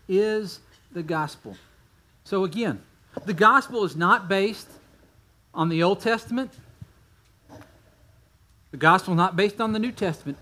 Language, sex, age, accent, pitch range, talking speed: English, male, 40-59, American, 115-195 Hz, 130 wpm